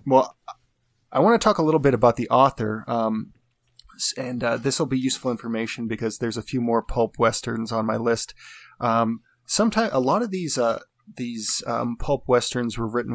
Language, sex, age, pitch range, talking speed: English, male, 30-49, 115-130 Hz, 190 wpm